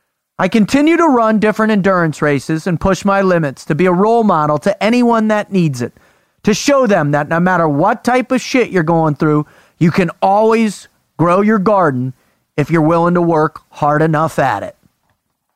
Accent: American